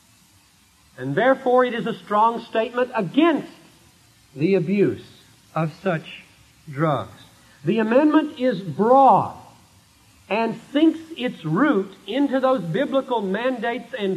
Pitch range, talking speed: 155-235 Hz, 110 wpm